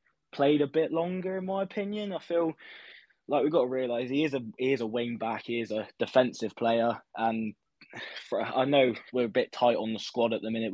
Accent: British